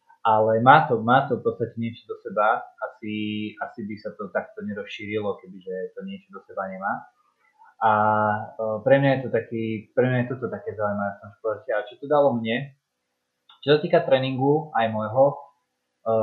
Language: Slovak